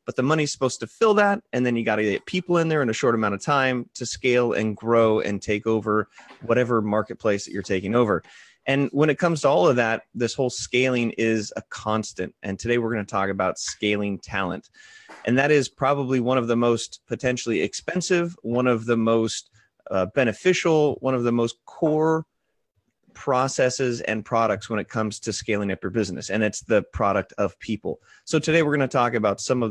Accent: American